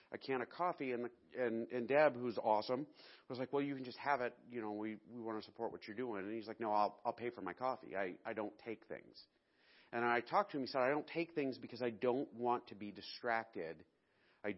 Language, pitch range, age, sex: English, 110-130 Hz, 40-59, male